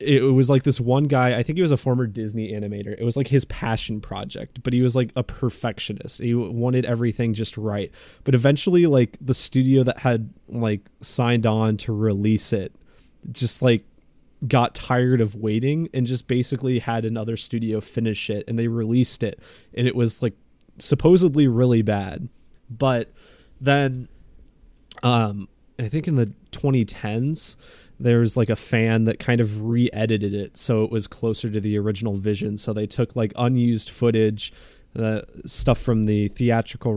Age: 20-39